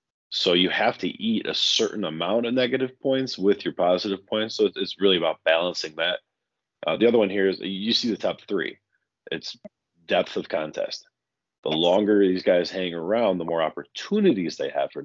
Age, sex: 30-49, male